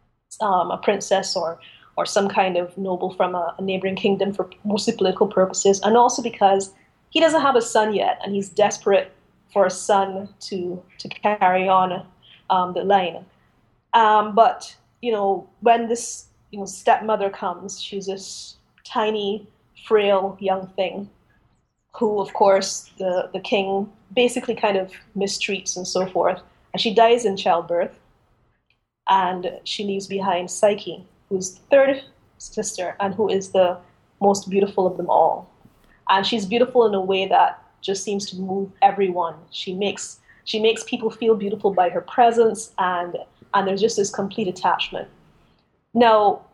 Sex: female